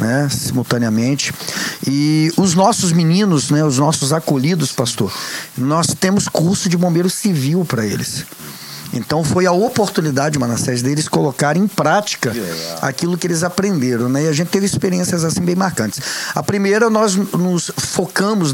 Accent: Brazilian